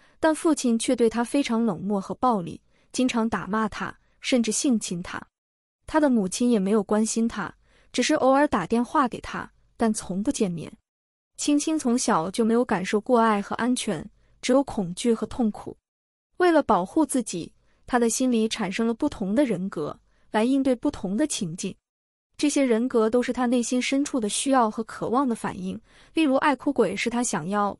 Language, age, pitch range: Chinese, 20-39, 210-260 Hz